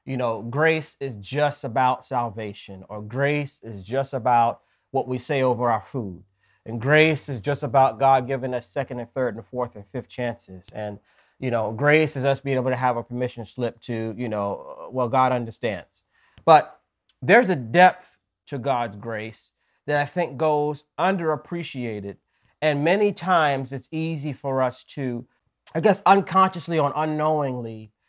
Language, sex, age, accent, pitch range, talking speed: English, male, 30-49, American, 115-145 Hz, 165 wpm